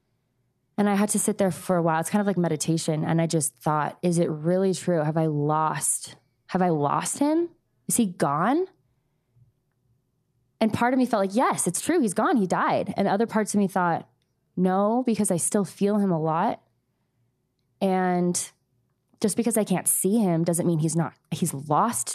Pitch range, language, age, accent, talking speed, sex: 155-195 Hz, English, 20-39, American, 195 wpm, female